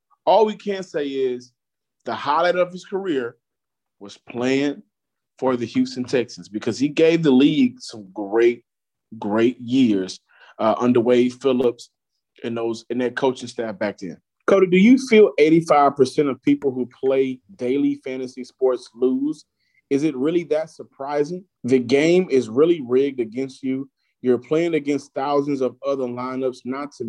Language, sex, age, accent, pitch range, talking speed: English, male, 30-49, American, 125-150 Hz, 155 wpm